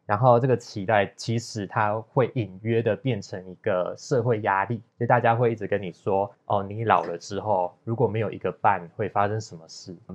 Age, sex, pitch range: 20-39, male, 95-115 Hz